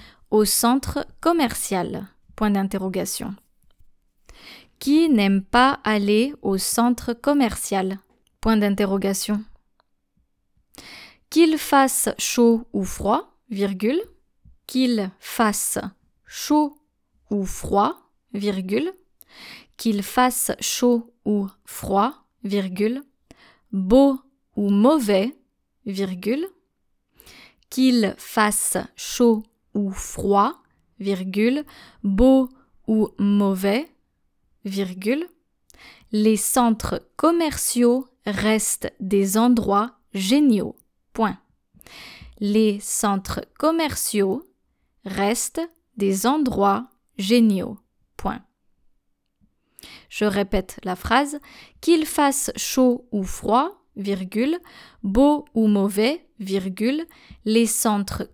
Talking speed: 75 wpm